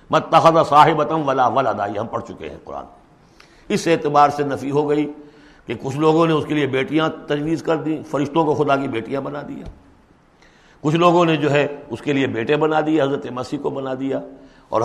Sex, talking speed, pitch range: male, 205 wpm, 135-175 Hz